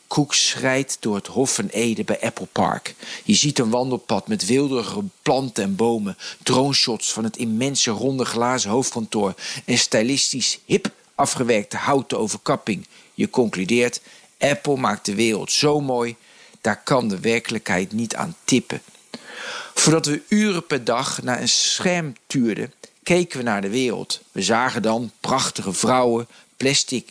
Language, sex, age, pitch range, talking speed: Dutch, male, 50-69, 115-145 Hz, 150 wpm